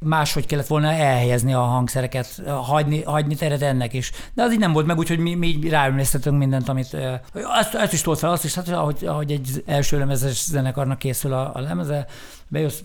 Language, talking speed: Hungarian, 200 wpm